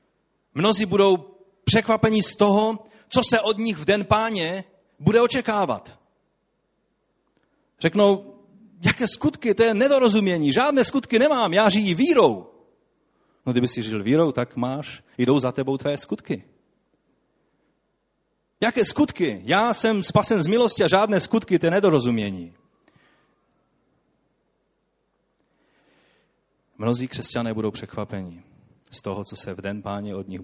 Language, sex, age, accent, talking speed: Czech, male, 40-59, native, 125 wpm